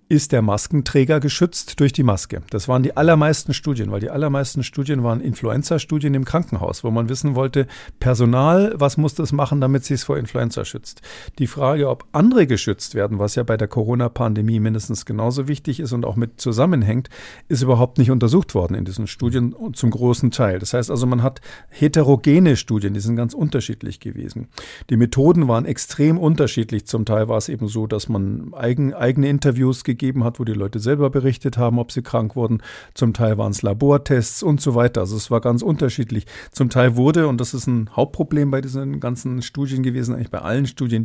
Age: 50-69